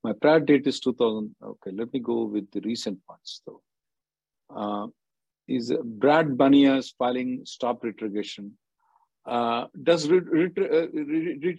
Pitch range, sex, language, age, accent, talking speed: 105-140 Hz, male, English, 50-69, Indian, 130 wpm